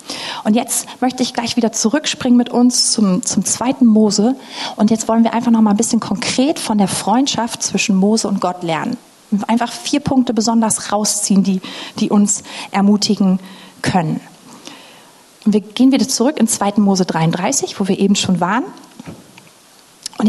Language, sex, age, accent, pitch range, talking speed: German, female, 30-49, German, 195-240 Hz, 170 wpm